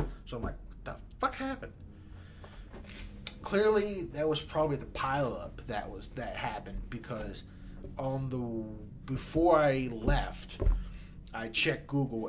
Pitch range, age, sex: 100-135 Hz, 30-49, male